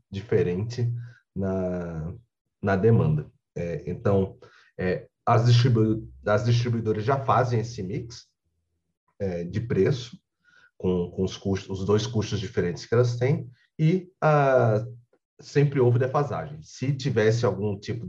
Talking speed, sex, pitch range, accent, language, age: 125 wpm, male, 105-135 Hz, Brazilian, Portuguese, 30-49